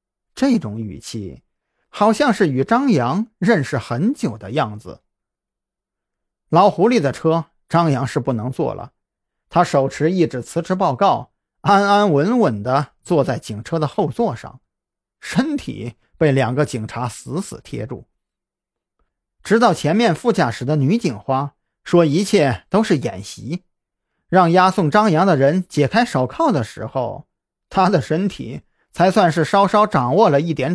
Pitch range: 135-195 Hz